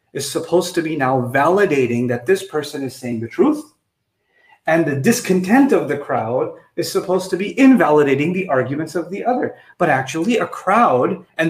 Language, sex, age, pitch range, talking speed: English, male, 30-49, 160-225 Hz, 175 wpm